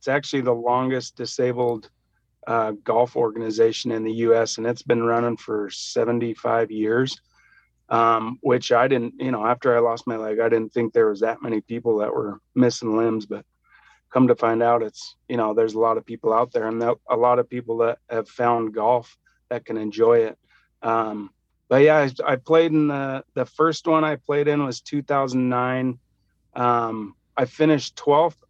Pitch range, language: 115-125 Hz, English